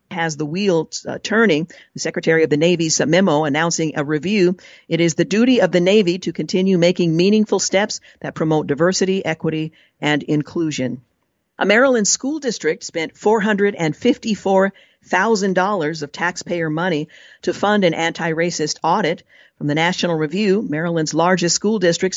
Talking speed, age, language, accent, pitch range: 155 wpm, 50-69, English, American, 155-195 Hz